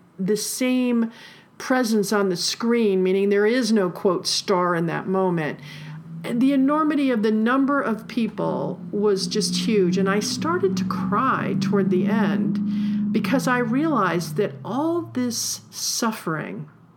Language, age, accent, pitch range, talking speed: English, 50-69, American, 190-255 Hz, 145 wpm